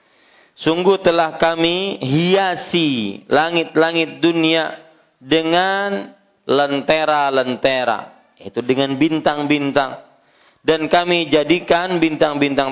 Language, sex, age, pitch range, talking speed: Malay, male, 40-59, 140-170 Hz, 70 wpm